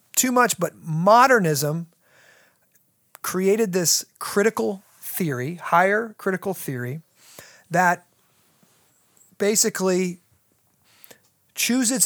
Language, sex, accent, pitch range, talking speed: English, male, American, 155-195 Hz, 70 wpm